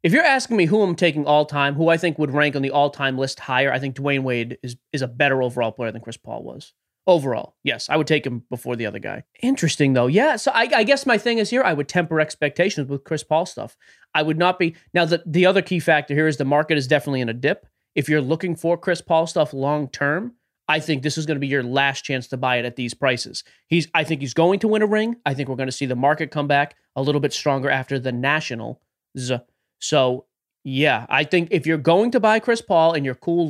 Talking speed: 260 wpm